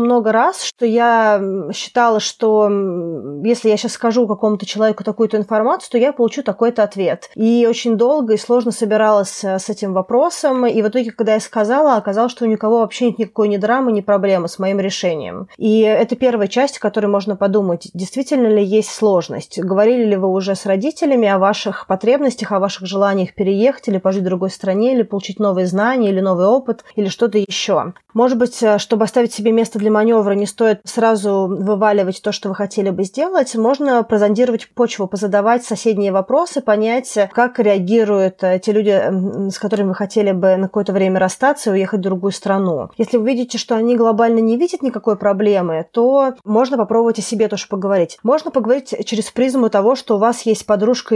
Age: 20-39